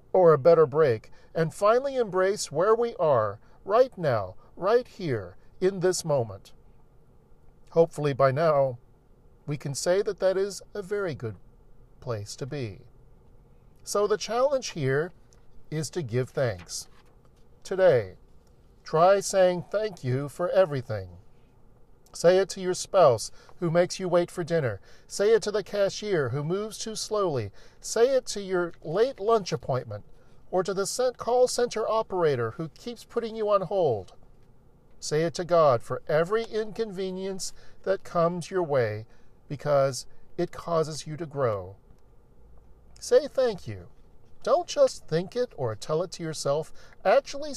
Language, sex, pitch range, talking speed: English, male, 125-200 Hz, 145 wpm